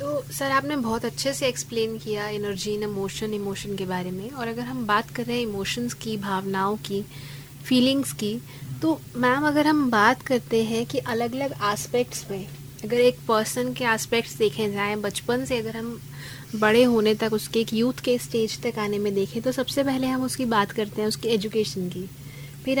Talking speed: 195 wpm